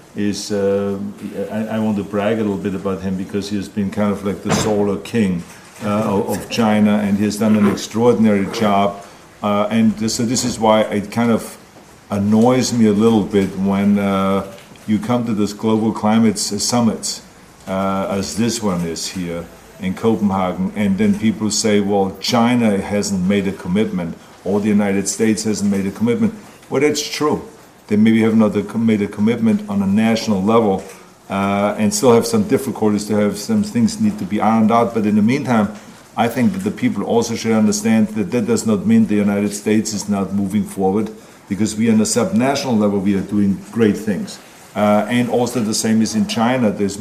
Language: English